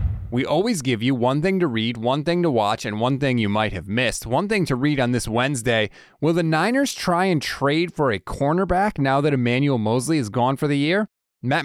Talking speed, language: 230 wpm, English